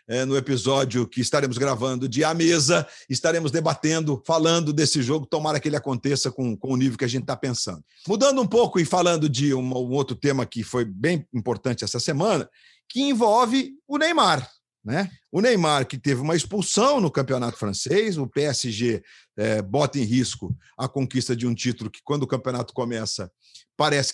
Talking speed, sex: 180 wpm, male